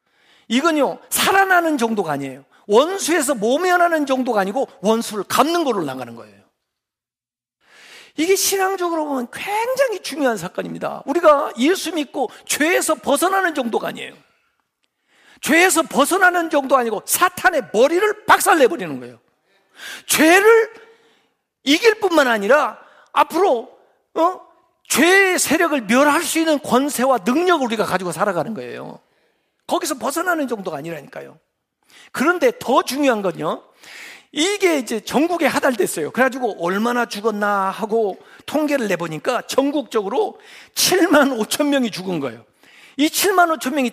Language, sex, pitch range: Korean, male, 220-340 Hz